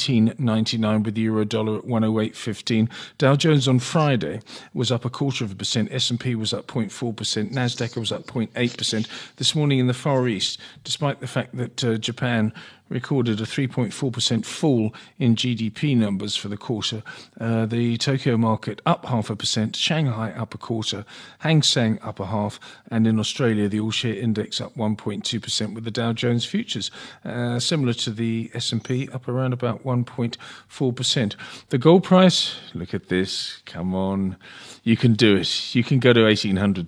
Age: 40-59